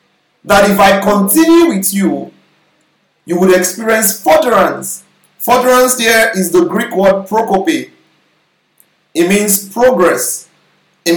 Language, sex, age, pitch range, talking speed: English, male, 50-69, 200-285 Hz, 115 wpm